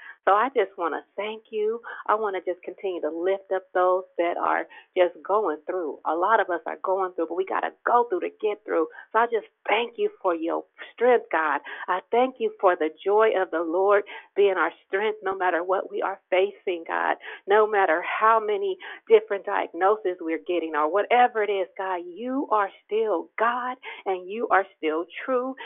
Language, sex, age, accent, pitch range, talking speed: English, female, 50-69, American, 195-285 Hz, 205 wpm